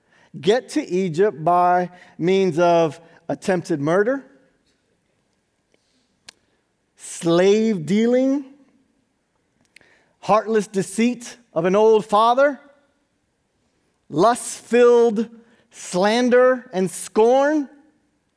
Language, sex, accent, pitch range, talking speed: English, male, American, 130-220 Hz, 65 wpm